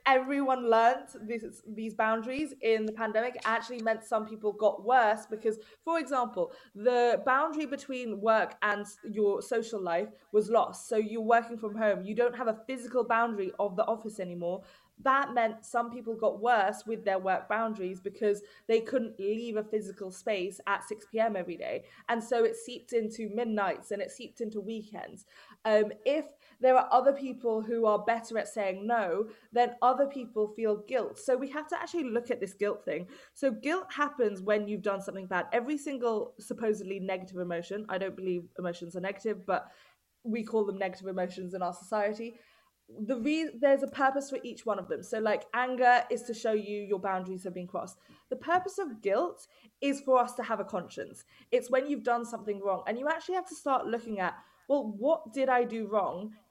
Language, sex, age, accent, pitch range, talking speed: English, female, 20-39, British, 205-250 Hz, 195 wpm